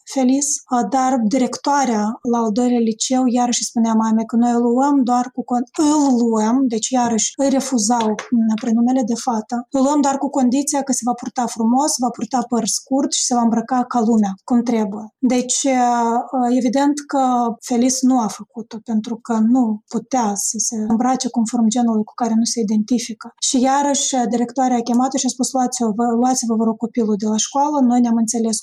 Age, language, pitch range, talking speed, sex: 20-39, Romanian, 230-255 Hz, 190 wpm, female